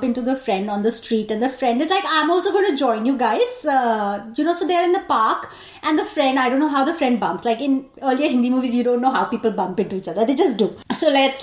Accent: Indian